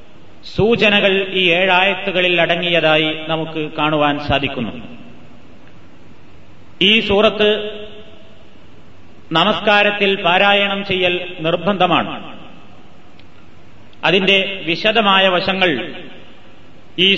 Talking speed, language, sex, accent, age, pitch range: 60 wpm, Malayalam, male, native, 30-49, 155-195 Hz